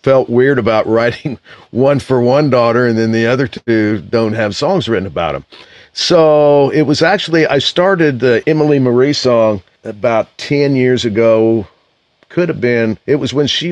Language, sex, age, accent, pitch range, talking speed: English, male, 50-69, American, 110-145 Hz, 175 wpm